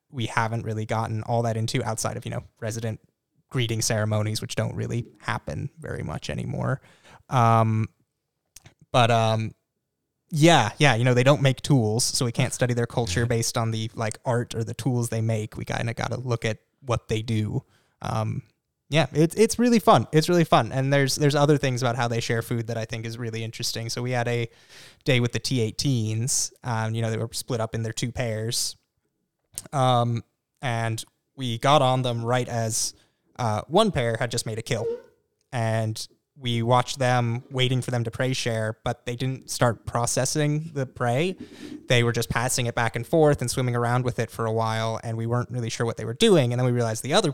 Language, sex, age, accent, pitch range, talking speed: English, male, 20-39, American, 115-130 Hz, 210 wpm